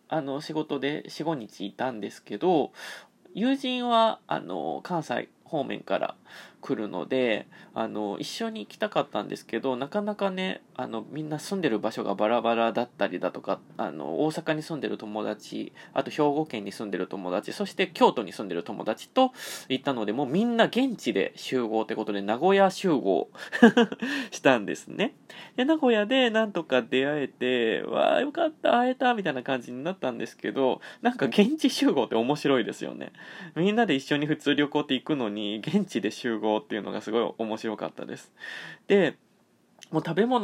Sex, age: male, 20-39